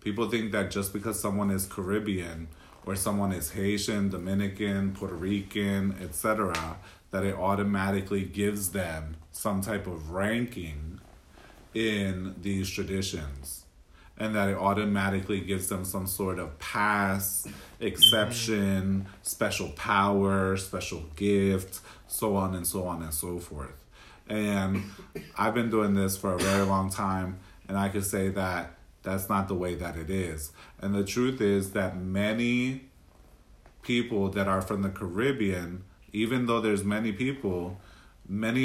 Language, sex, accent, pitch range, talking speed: English, male, American, 95-105 Hz, 140 wpm